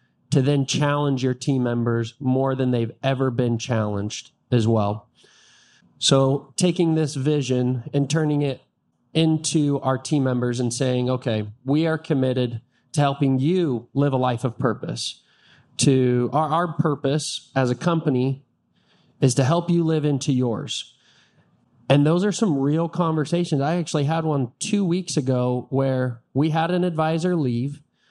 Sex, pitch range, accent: male, 125-155 Hz, American